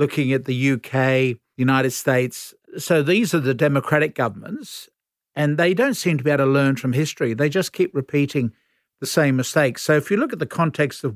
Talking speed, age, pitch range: 205 wpm, 50-69, 135-160 Hz